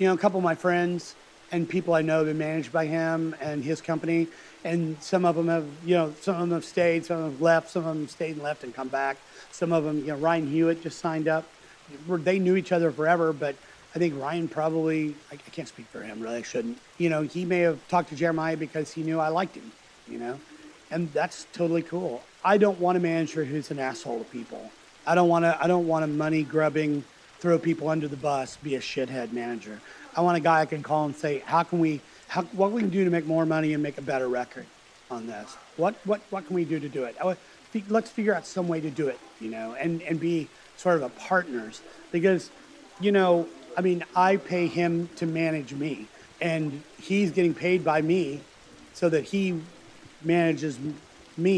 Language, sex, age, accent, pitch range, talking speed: English, male, 40-59, American, 150-175 Hz, 230 wpm